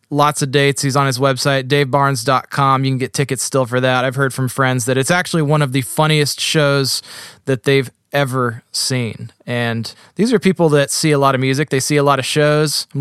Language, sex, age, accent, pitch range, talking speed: English, male, 20-39, American, 135-165 Hz, 220 wpm